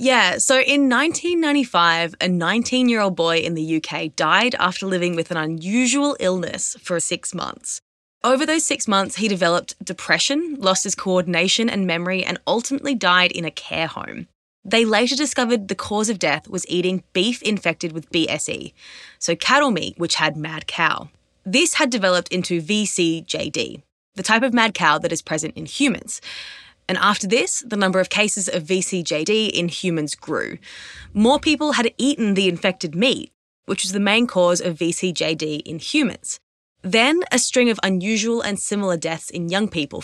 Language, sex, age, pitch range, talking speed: English, female, 20-39, 170-240 Hz, 170 wpm